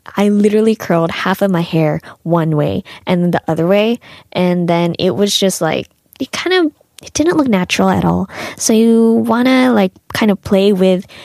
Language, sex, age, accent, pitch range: Korean, female, 20-39, American, 180-230 Hz